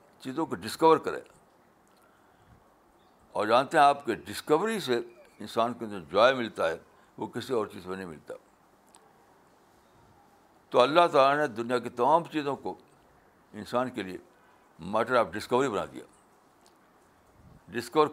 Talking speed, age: 145 wpm, 60-79